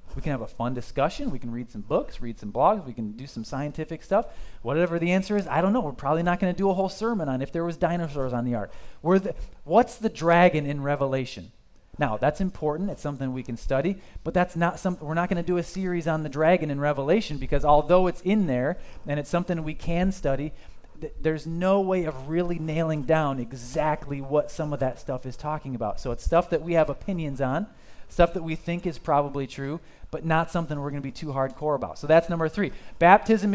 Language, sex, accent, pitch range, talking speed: English, male, American, 135-175 Hz, 240 wpm